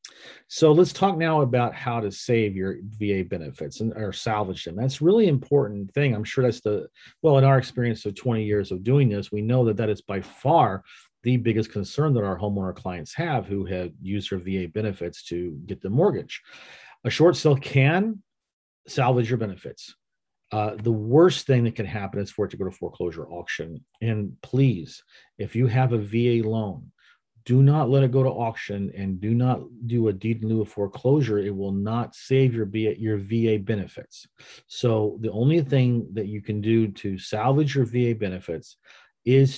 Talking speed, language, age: 195 wpm, English, 40-59